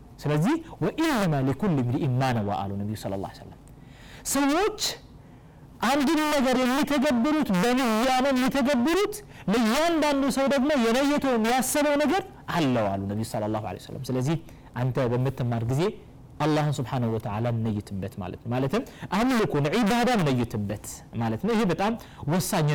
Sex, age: male, 30-49